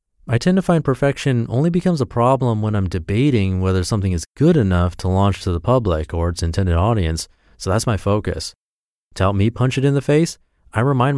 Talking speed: 215 wpm